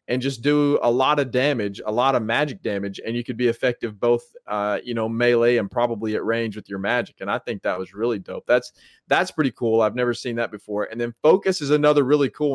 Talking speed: 250 wpm